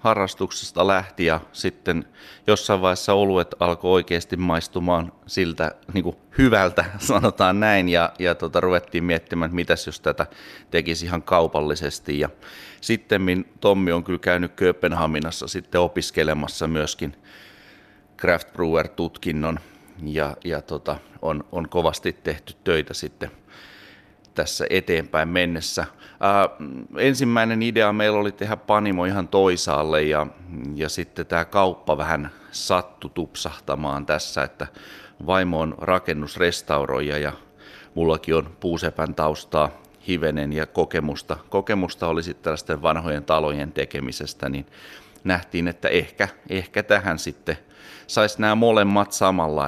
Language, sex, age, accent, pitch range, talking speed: Finnish, male, 30-49, native, 75-95 Hz, 120 wpm